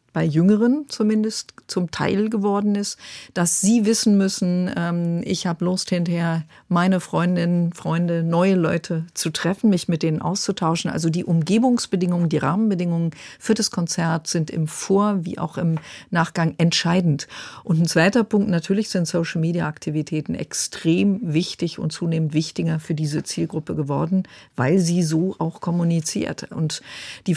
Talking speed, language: 145 wpm, German